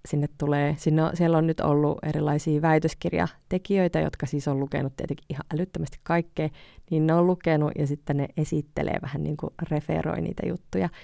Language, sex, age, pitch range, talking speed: Finnish, female, 30-49, 145-165 Hz, 175 wpm